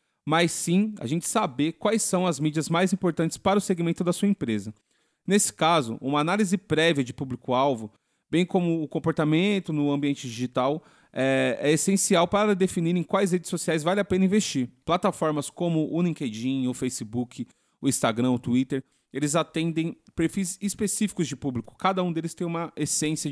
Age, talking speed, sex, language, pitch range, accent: 30-49, 170 wpm, male, Portuguese, 140-185 Hz, Brazilian